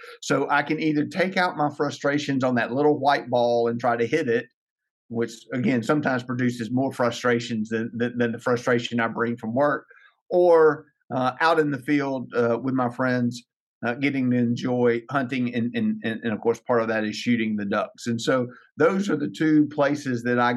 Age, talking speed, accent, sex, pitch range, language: 50-69, 200 wpm, American, male, 115-140 Hz, English